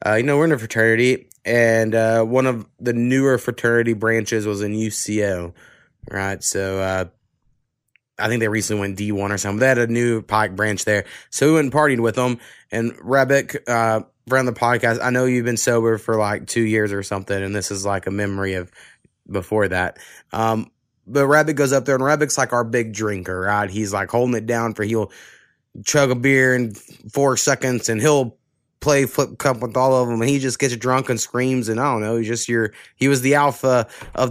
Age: 20-39